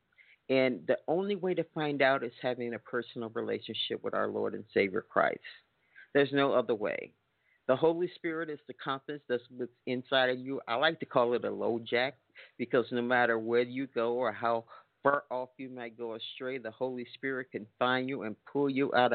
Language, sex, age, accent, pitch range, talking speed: English, male, 50-69, American, 110-135 Hz, 200 wpm